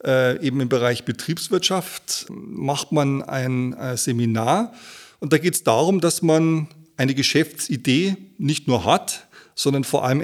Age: 30-49